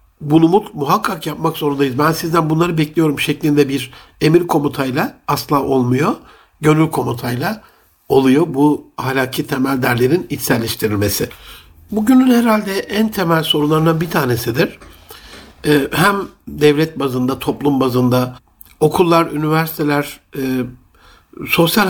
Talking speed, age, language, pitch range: 105 wpm, 60-79, Turkish, 135-165 Hz